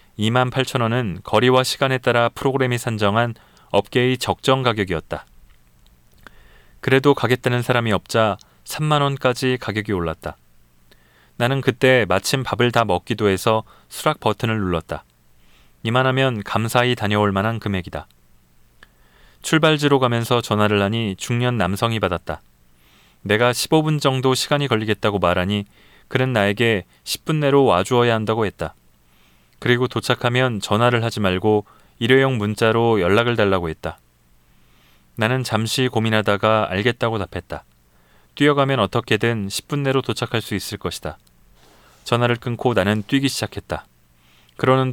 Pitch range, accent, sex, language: 85-125 Hz, native, male, Korean